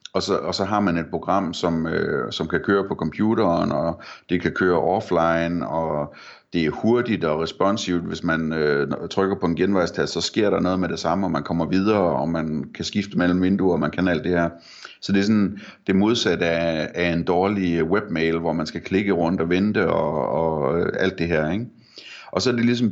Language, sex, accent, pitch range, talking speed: Danish, male, native, 80-100 Hz, 225 wpm